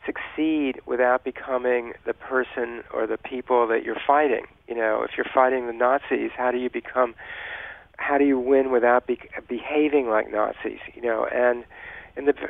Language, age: English, 50-69